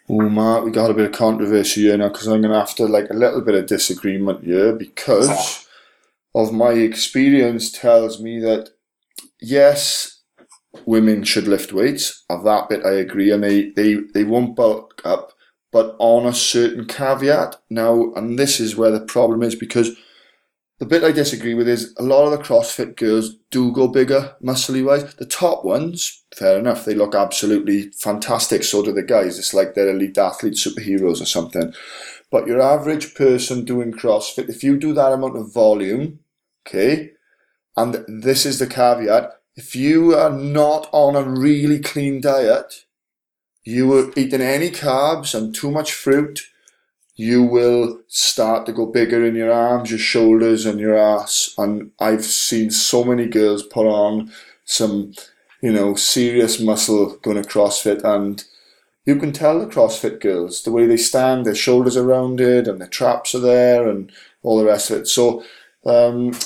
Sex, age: male, 20-39